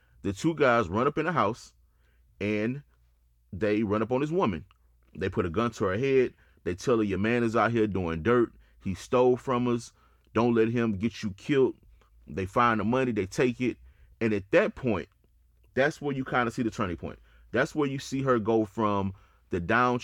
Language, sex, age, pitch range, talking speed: English, male, 30-49, 95-130 Hz, 215 wpm